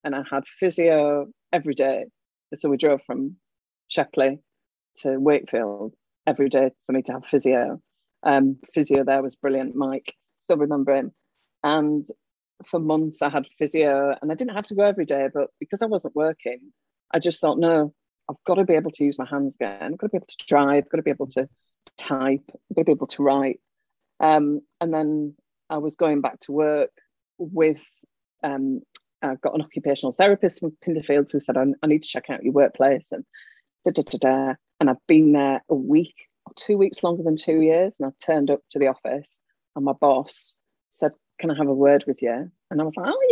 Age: 40-59